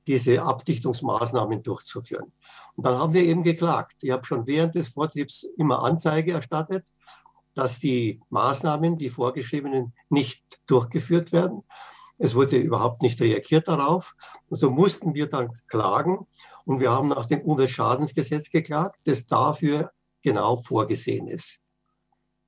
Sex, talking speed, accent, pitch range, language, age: male, 135 wpm, German, 130-175 Hz, German, 50-69